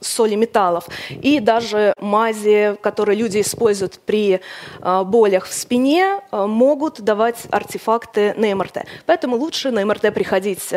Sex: female